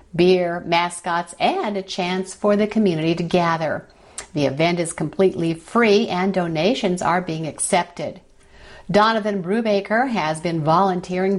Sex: female